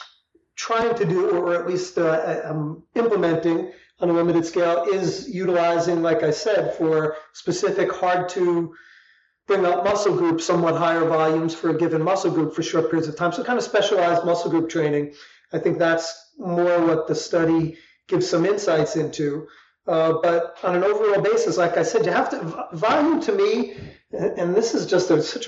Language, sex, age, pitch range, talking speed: English, male, 40-59, 160-205 Hz, 180 wpm